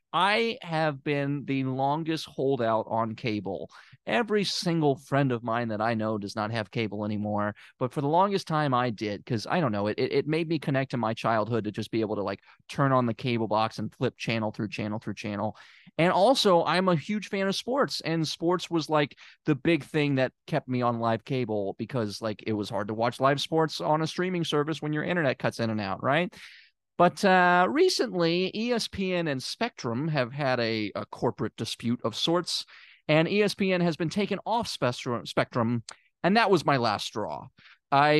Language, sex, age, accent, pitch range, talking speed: English, male, 30-49, American, 120-165 Hz, 205 wpm